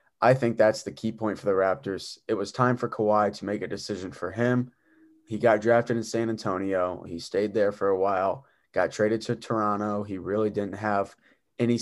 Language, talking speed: English, 210 wpm